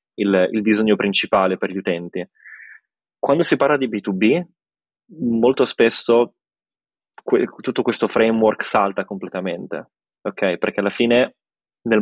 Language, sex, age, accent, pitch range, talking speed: Italian, male, 20-39, native, 100-115 Hz, 120 wpm